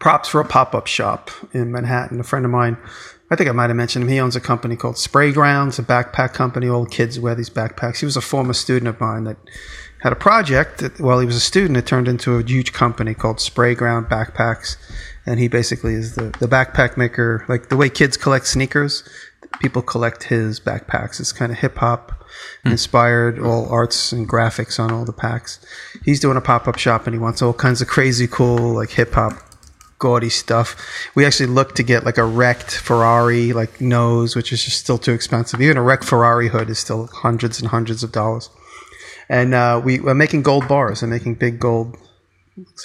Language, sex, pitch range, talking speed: English, male, 115-130 Hz, 205 wpm